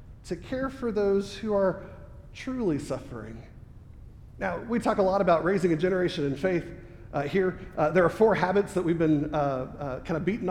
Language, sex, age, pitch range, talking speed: English, male, 40-59, 145-200 Hz, 195 wpm